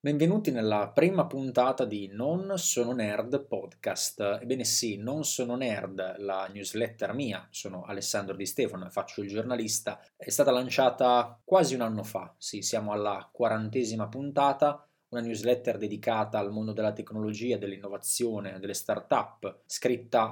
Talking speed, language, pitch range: 140 wpm, Italian, 105-125 Hz